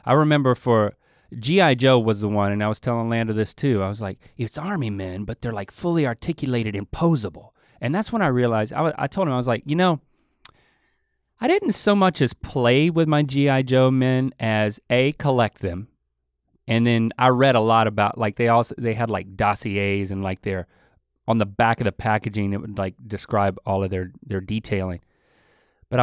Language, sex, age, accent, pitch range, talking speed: English, male, 30-49, American, 105-150 Hz, 205 wpm